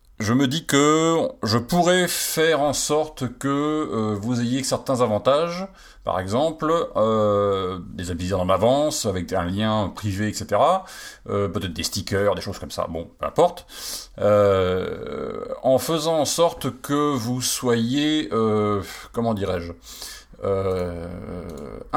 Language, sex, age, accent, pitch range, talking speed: French, male, 40-59, French, 95-130 Hz, 135 wpm